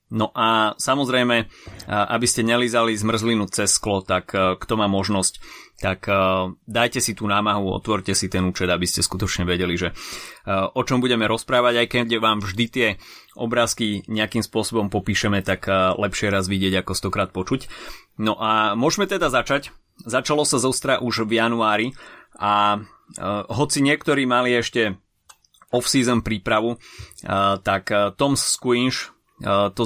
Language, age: Slovak, 30-49